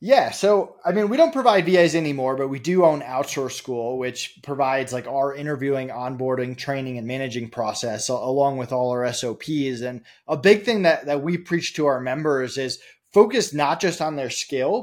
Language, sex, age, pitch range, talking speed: English, male, 20-39, 135-175 Hz, 195 wpm